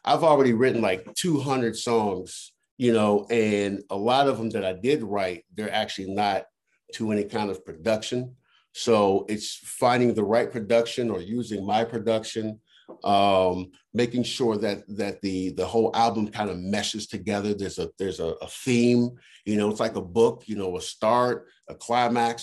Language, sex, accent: English, male, American